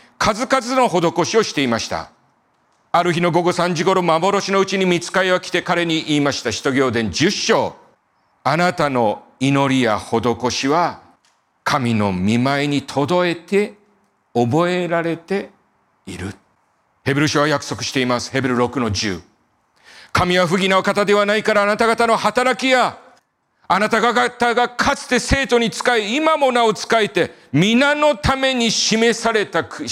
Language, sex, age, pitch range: Japanese, male, 40-59, 140-230 Hz